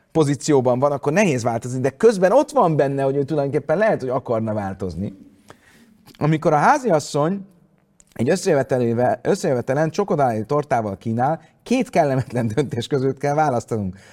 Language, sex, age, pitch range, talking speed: Hungarian, male, 30-49, 120-160 Hz, 125 wpm